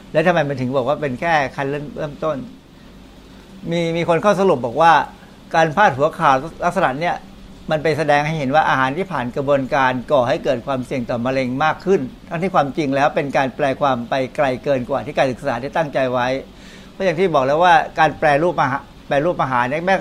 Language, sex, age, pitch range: Thai, male, 60-79, 130-165 Hz